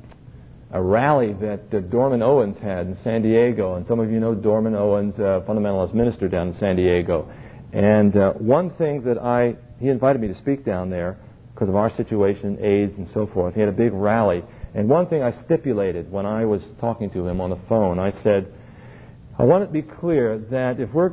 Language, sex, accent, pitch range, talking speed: English, male, American, 100-125 Hz, 215 wpm